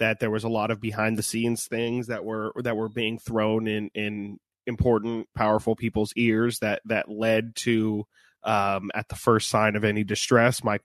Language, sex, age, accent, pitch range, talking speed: English, male, 20-39, American, 110-125 Hz, 195 wpm